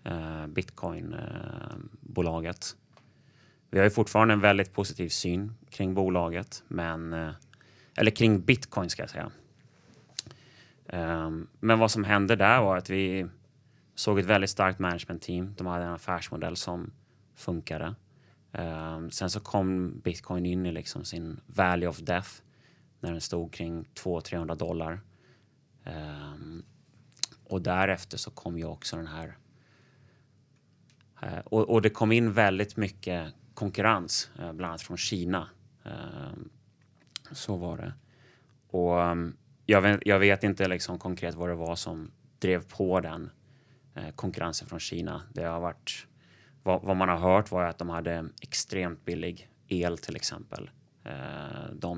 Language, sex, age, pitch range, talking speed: Swedish, male, 30-49, 85-110 Hz, 130 wpm